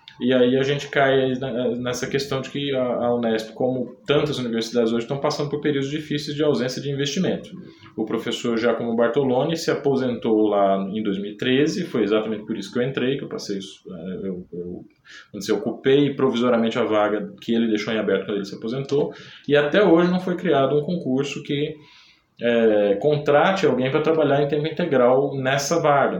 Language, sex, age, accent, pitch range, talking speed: Portuguese, male, 20-39, Brazilian, 110-145 Hz, 180 wpm